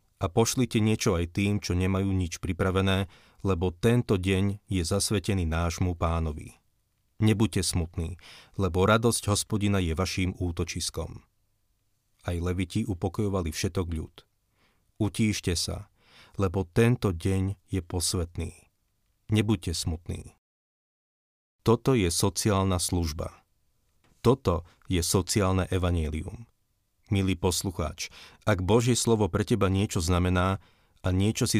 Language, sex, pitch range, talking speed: Slovak, male, 90-105 Hz, 110 wpm